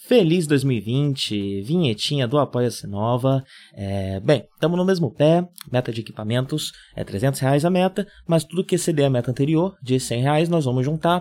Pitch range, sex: 120-170 Hz, male